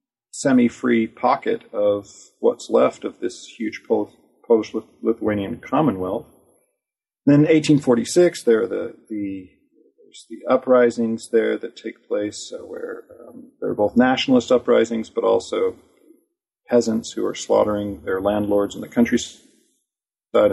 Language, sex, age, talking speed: English, male, 40-59, 125 wpm